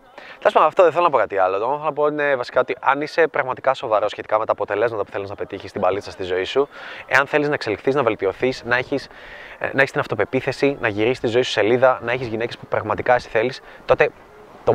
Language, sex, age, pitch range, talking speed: Greek, male, 20-39, 130-185 Hz, 235 wpm